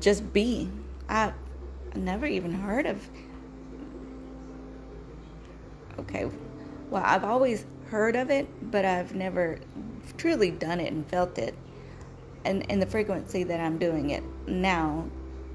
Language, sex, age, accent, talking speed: English, female, 30-49, American, 125 wpm